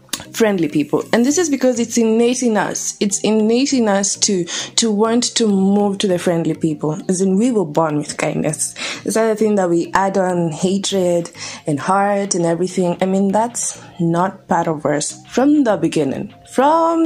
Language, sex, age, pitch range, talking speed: English, female, 20-39, 170-230 Hz, 185 wpm